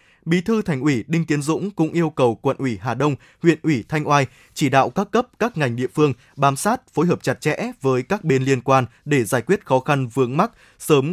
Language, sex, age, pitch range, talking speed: Vietnamese, male, 20-39, 130-165 Hz, 245 wpm